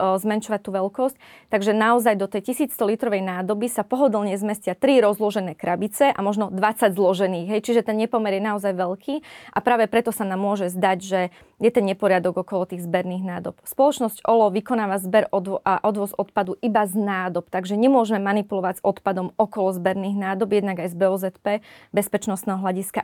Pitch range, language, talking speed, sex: 190-220 Hz, Slovak, 170 wpm, female